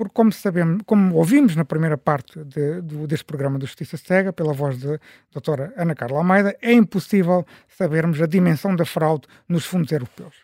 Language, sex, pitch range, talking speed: Portuguese, male, 155-205 Hz, 190 wpm